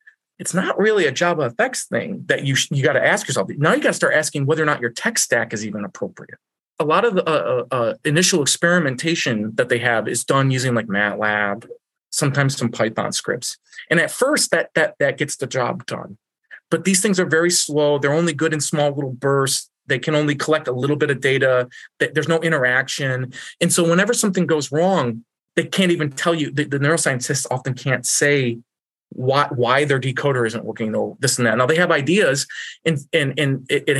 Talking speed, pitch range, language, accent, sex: 210 wpm, 125-165 Hz, English, American, male